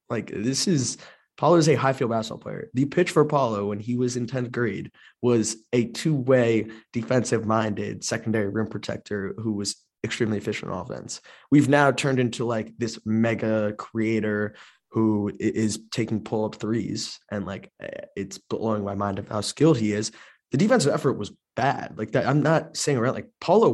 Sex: male